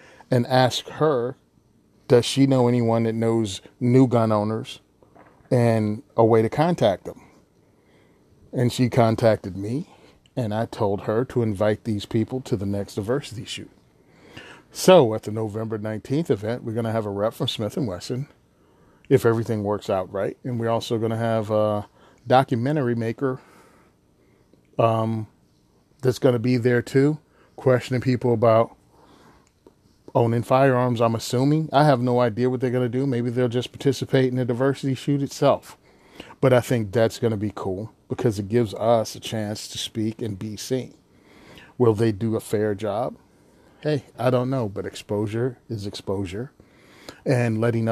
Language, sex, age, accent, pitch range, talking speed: English, male, 30-49, American, 110-125 Hz, 165 wpm